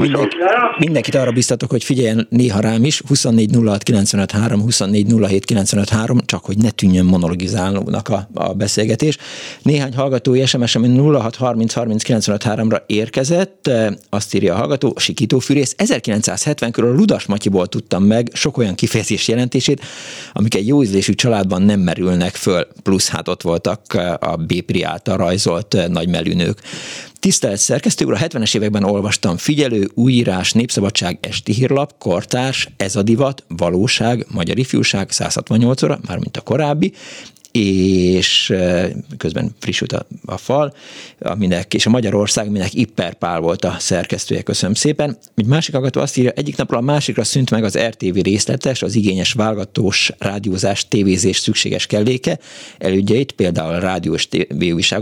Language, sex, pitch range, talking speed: Hungarian, male, 100-125 Hz, 135 wpm